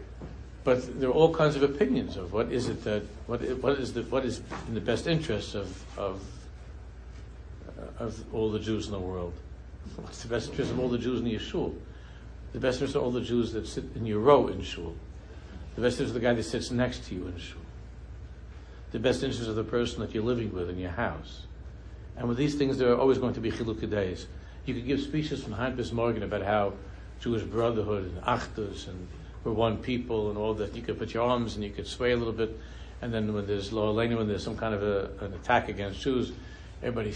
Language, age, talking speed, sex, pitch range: English, 60-79, 230 wpm, male, 95-120 Hz